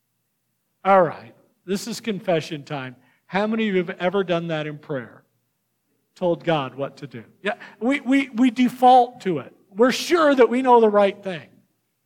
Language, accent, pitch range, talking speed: English, American, 180-250 Hz, 180 wpm